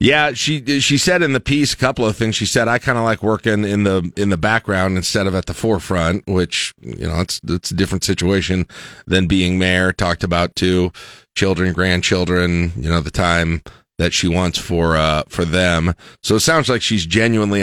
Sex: male